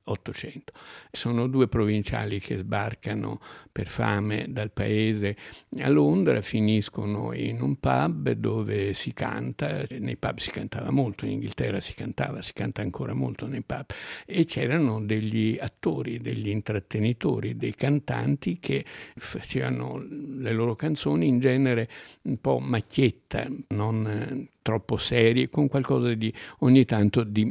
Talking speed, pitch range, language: 130 wpm, 105-130 Hz, Italian